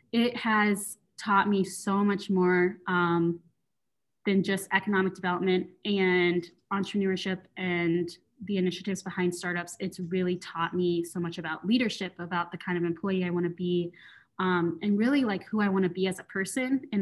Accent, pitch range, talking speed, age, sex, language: American, 175-205 Hz, 175 wpm, 20-39, female, English